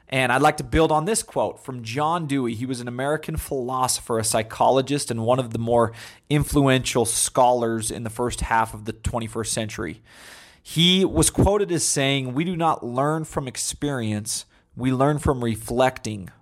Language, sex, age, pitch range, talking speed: English, male, 30-49, 115-140 Hz, 175 wpm